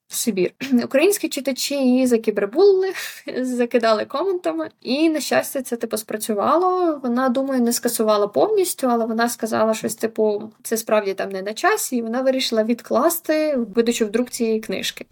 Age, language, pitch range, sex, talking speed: 20-39, Ukrainian, 215-260 Hz, female, 145 wpm